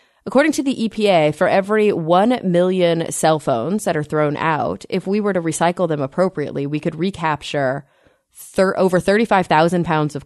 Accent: American